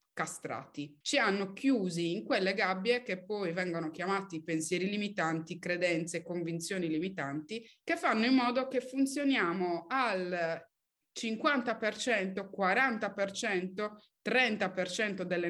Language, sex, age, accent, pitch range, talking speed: Italian, female, 30-49, native, 170-230 Hz, 105 wpm